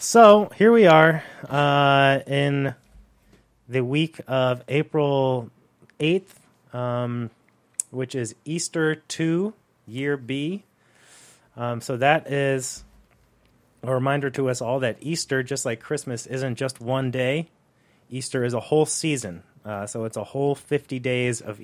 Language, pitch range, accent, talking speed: English, 115-140 Hz, American, 135 wpm